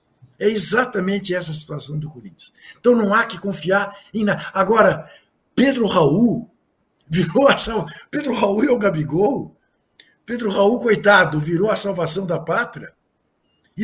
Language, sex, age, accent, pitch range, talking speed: Portuguese, male, 60-79, Brazilian, 165-225 Hz, 145 wpm